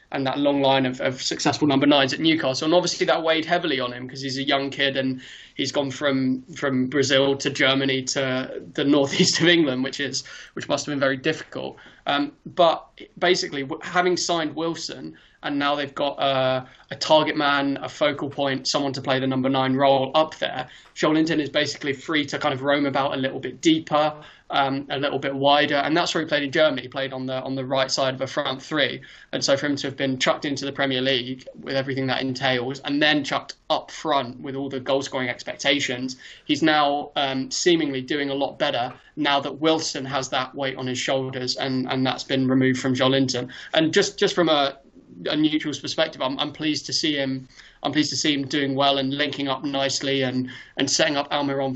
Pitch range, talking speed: 130-150 Hz, 215 wpm